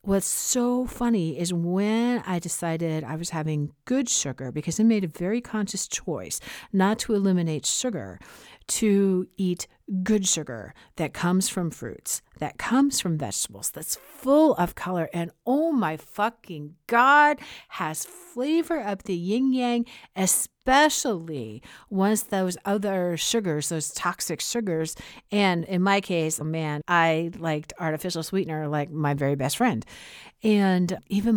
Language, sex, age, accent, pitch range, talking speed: English, female, 50-69, American, 155-205 Hz, 145 wpm